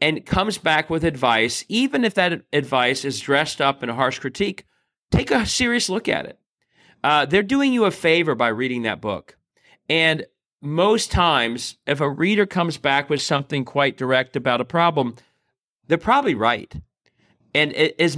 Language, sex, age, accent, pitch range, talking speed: English, male, 40-59, American, 130-175 Hz, 175 wpm